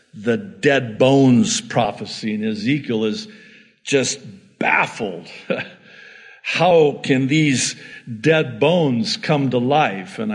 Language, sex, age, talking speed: English, male, 60-79, 105 wpm